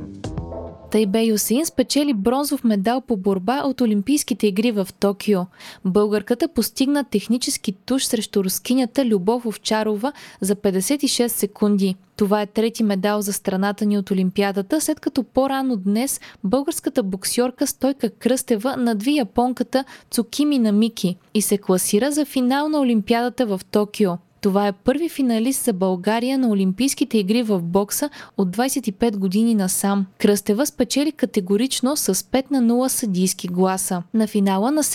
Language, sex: Bulgarian, female